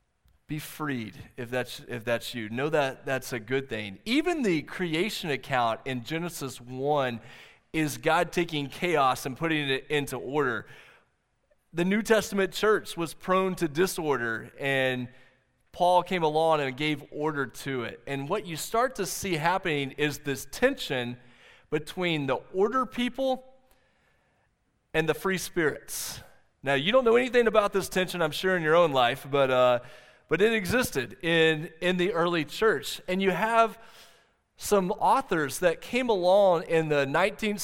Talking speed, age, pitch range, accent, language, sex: 160 wpm, 30-49, 135-185 Hz, American, English, male